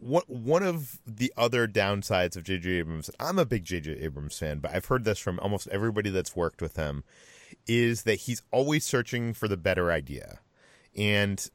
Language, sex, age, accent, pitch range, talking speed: English, male, 30-49, American, 100-120 Hz, 180 wpm